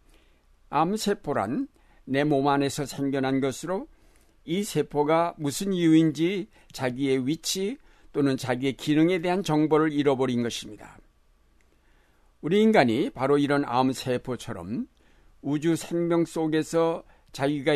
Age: 60-79